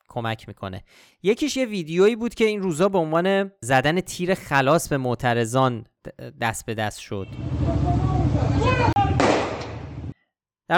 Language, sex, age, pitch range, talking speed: Persian, male, 30-49, 130-175 Hz, 115 wpm